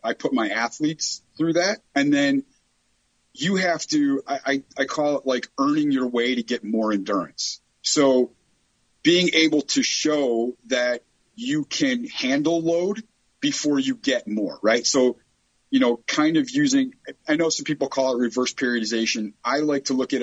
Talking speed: 170 wpm